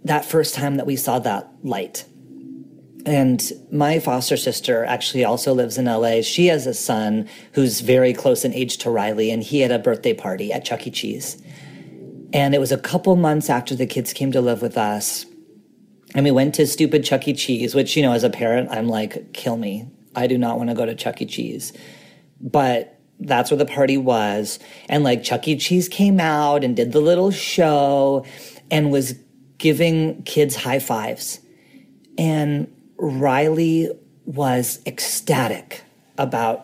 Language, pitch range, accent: English, 125-150 Hz, American